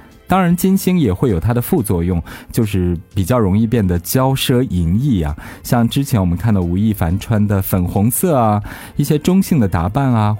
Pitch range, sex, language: 90-125 Hz, male, Chinese